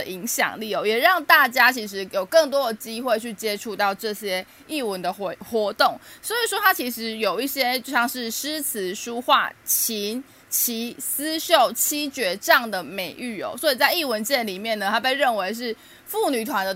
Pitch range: 205-275 Hz